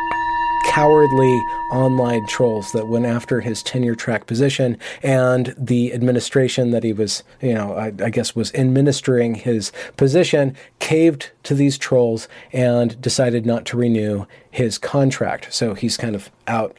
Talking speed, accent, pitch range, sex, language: 145 wpm, American, 120-140 Hz, male, English